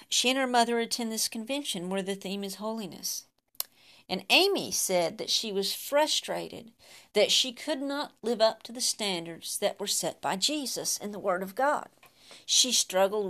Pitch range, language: 205-265 Hz, English